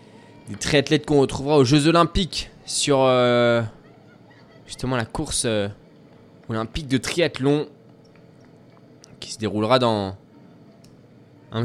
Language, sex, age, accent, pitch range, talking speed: French, male, 20-39, French, 135-175 Hz, 110 wpm